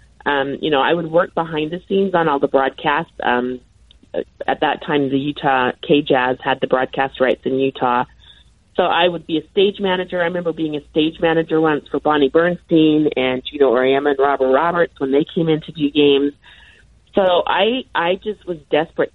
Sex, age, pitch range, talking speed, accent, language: female, 30-49, 140-180 Hz, 195 wpm, American, English